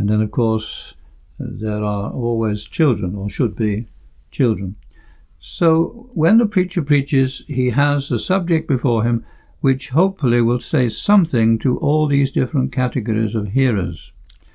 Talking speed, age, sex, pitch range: 145 wpm, 60-79, male, 110-140 Hz